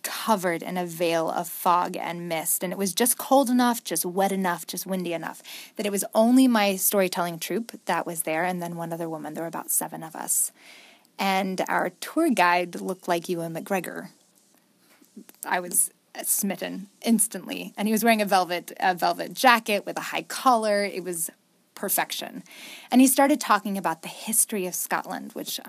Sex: female